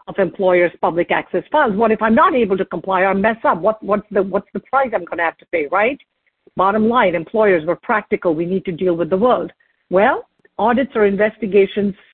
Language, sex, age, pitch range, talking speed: English, female, 50-69, 185-210 Hz, 215 wpm